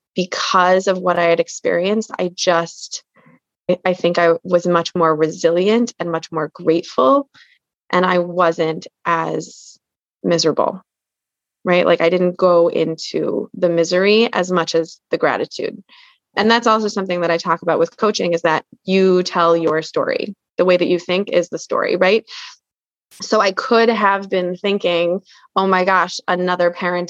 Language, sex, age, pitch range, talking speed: English, female, 20-39, 170-190 Hz, 160 wpm